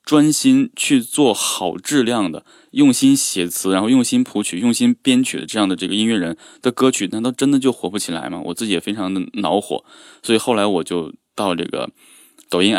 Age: 20-39